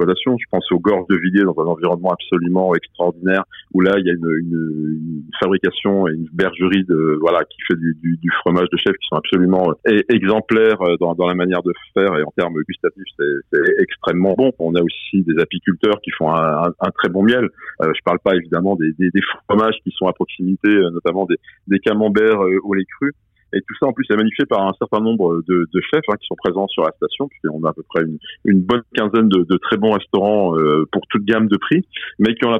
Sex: male